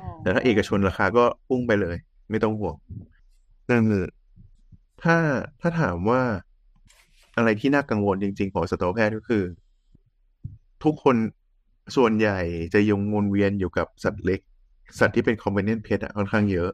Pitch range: 95-120 Hz